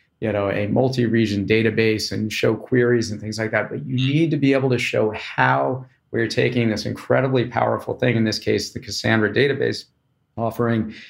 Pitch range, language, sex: 110-125 Hz, English, male